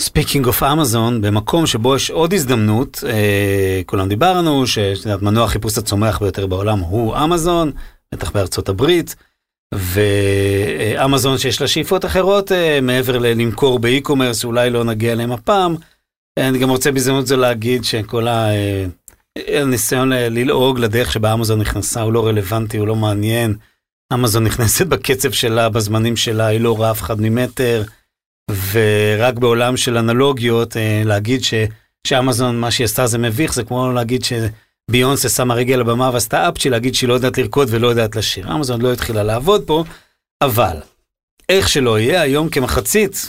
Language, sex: Hebrew, male